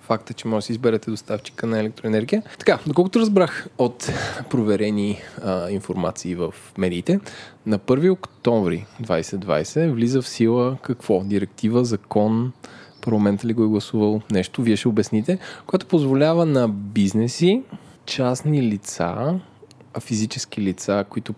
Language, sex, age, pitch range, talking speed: Bulgarian, male, 20-39, 110-150 Hz, 130 wpm